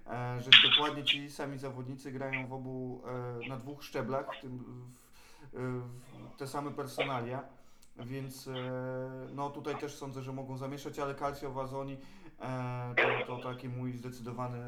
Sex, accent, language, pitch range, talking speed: male, native, Polish, 125-145 Hz, 160 wpm